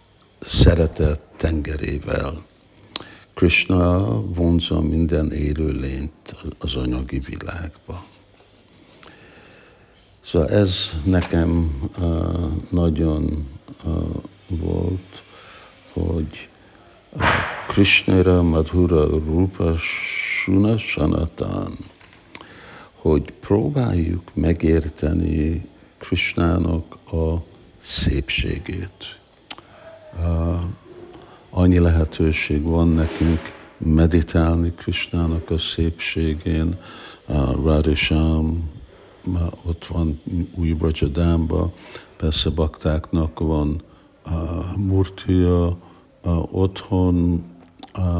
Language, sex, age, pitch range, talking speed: Hungarian, male, 60-79, 80-90 Hz, 60 wpm